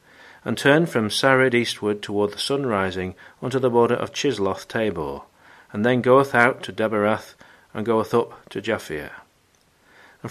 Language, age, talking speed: English, 40-59, 150 wpm